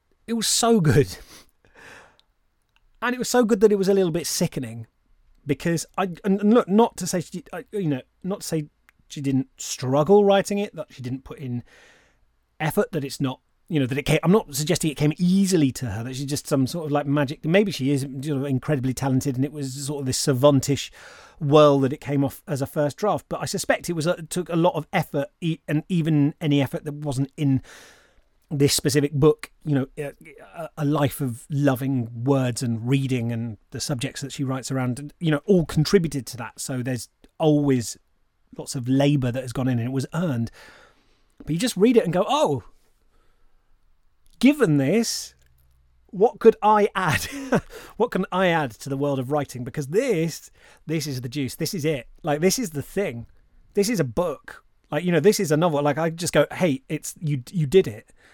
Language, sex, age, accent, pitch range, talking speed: English, male, 30-49, British, 130-175 Hz, 205 wpm